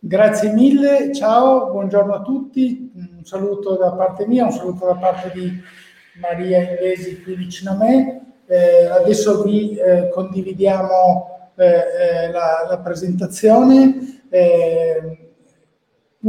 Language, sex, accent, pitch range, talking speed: Italian, male, native, 185-220 Hz, 120 wpm